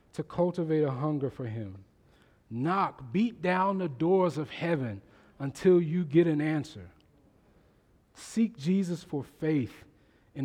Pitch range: 145-190 Hz